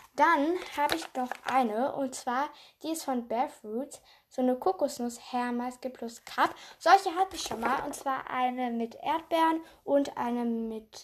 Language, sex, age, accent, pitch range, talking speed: German, female, 10-29, German, 240-290 Hz, 160 wpm